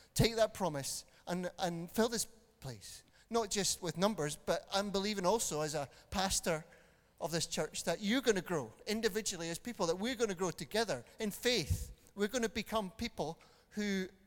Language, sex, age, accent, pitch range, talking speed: English, male, 30-49, British, 175-225 Hz, 185 wpm